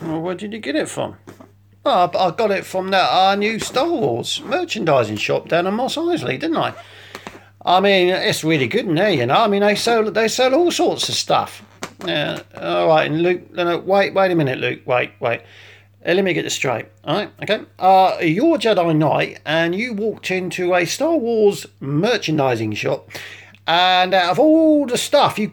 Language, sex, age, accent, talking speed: English, male, 40-59, British, 195 wpm